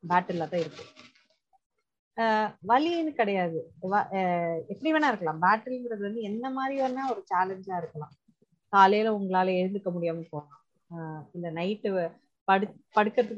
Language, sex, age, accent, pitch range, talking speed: Tamil, female, 30-49, native, 170-230 Hz, 95 wpm